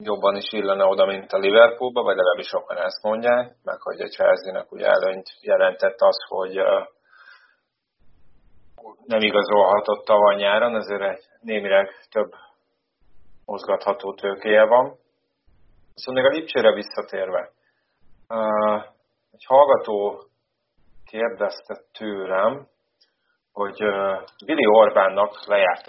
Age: 30-49